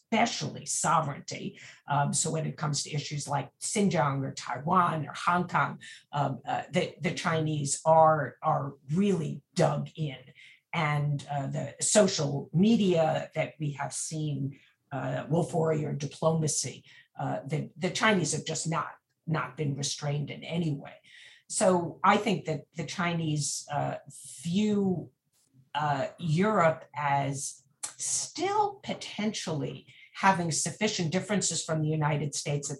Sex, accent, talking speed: female, American, 135 wpm